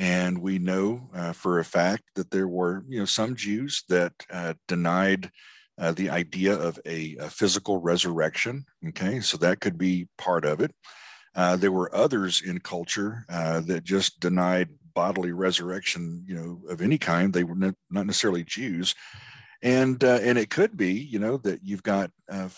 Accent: American